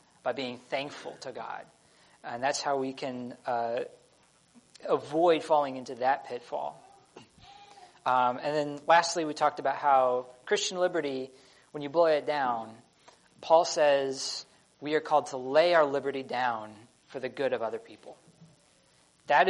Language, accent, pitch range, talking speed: English, American, 125-160 Hz, 150 wpm